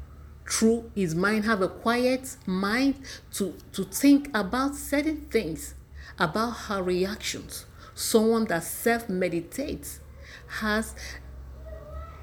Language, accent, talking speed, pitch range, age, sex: English, Nigerian, 105 wpm, 150-205 Hz, 50-69, female